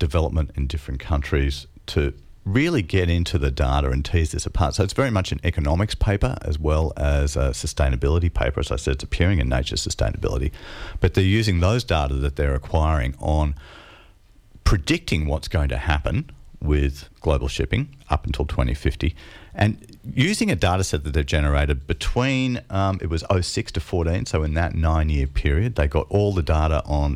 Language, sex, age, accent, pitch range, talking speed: English, male, 50-69, Australian, 75-95 Hz, 180 wpm